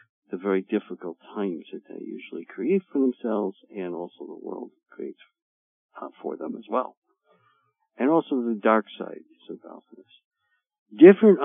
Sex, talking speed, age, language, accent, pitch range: male, 140 wpm, 60-79, English, American, 105-160 Hz